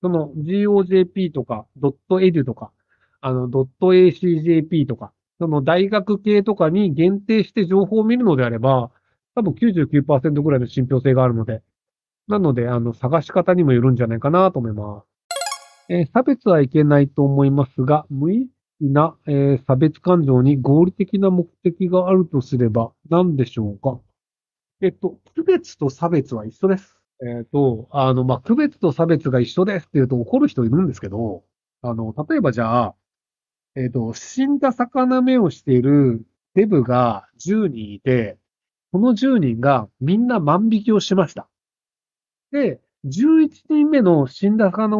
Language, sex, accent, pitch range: Japanese, male, native, 130-195 Hz